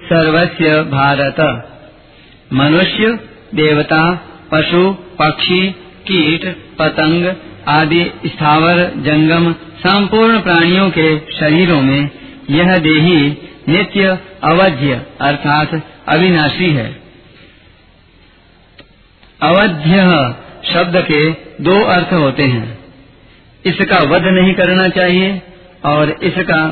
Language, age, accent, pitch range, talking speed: Hindi, 50-69, native, 145-180 Hz, 80 wpm